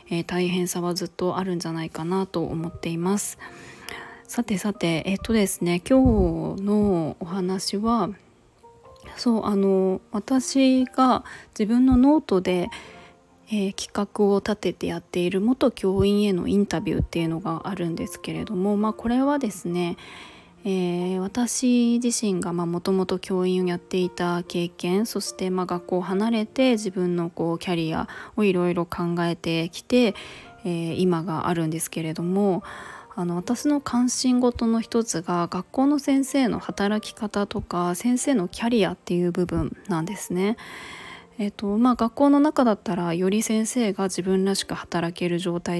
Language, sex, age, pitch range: Japanese, female, 20-39, 175-230 Hz